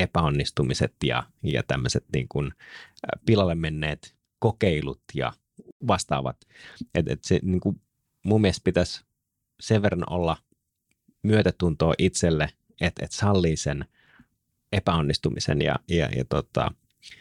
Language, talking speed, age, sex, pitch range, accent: Finnish, 105 wpm, 30-49, male, 75-100 Hz, native